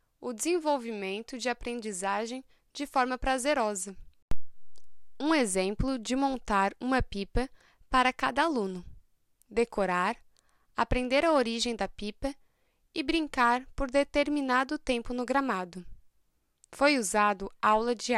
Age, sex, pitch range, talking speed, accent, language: 10-29, female, 220-280 Hz, 110 wpm, Brazilian, Portuguese